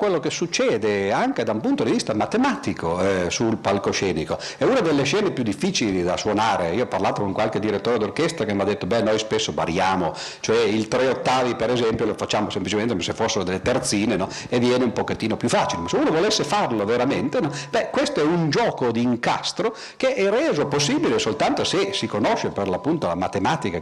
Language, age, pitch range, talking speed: Italian, 50-69, 100-135 Hz, 210 wpm